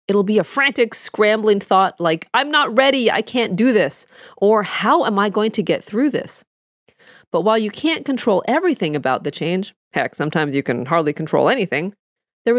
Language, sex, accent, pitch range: English, female, American, 170-245 Hz